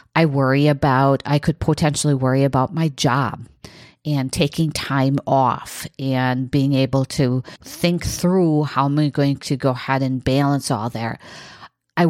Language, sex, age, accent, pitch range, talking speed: English, female, 50-69, American, 135-175 Hz, 160 wpm